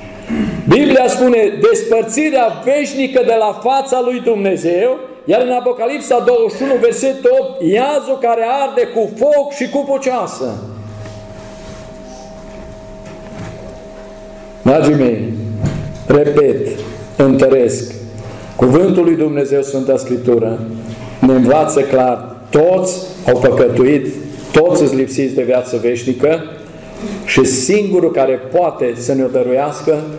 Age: 40-59